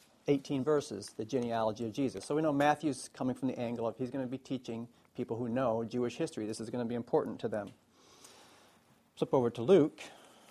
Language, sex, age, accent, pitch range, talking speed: English, male, 40-59, American, 120-155 Hz, 210 wpm